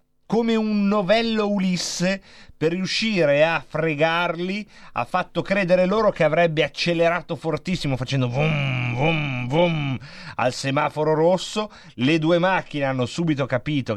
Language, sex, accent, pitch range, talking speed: Italian, male, native, 125-180 Hz, 125 wpm